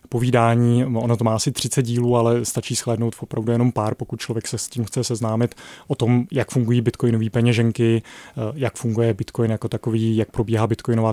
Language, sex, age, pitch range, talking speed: Czech, male, 20-39, 115-125 Hz, 185 wpm